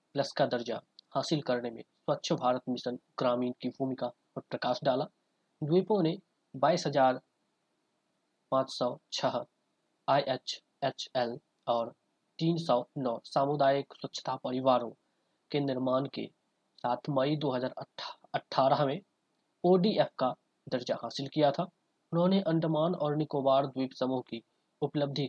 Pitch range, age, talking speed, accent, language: 125-155 Hz, 20-39, 105 wpm, native, Hindi